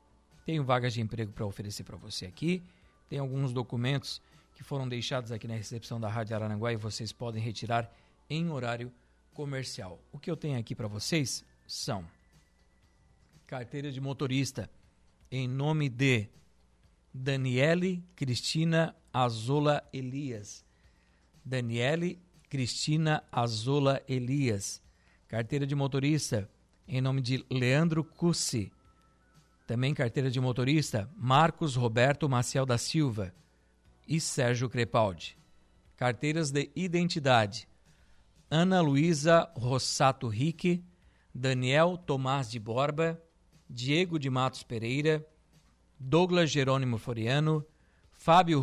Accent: Brazilian